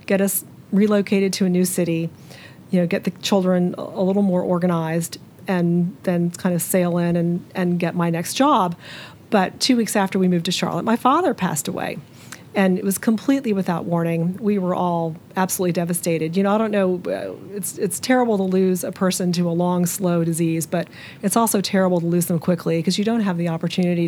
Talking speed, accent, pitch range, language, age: 205 wpm, American, 170-195 Hz, English, 40-59